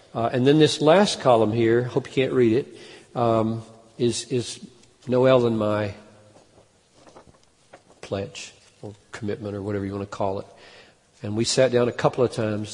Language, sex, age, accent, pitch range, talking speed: English, male, 50-69, American, 115-135 Hz, 170 wpm